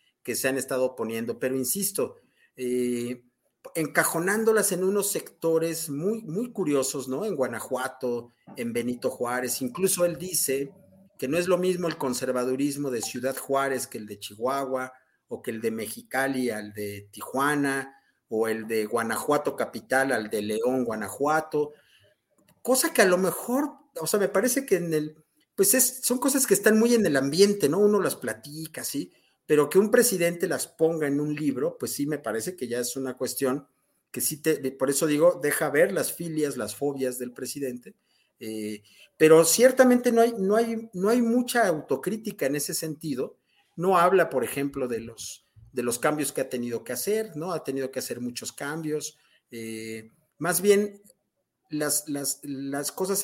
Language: Spanish